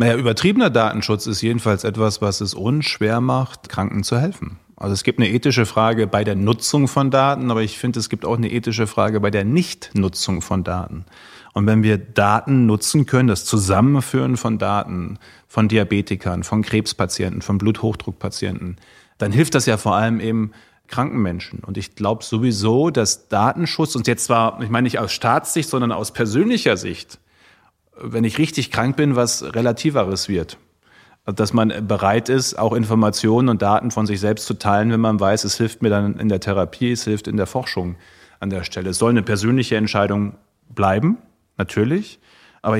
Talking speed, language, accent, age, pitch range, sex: 180 wpm, German, German, 30-49, 105-125 Hz, male